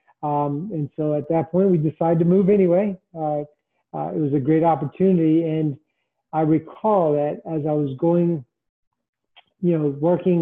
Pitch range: 155-180 Hz